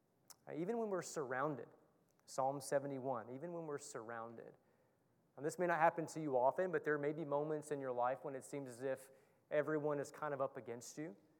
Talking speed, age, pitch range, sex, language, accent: 200 wpm, 30-49, 135-155 Hz, male, English, American